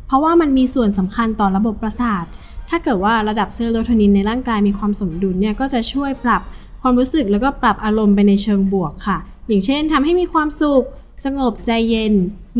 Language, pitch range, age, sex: Thai, 200-260 Hz, 10-29, female